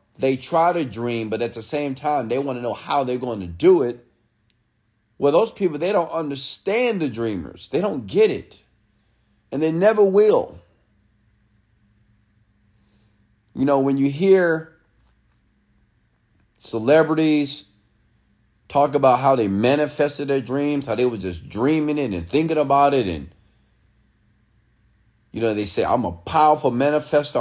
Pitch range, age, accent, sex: 105-150 Hz, 30-49, American, male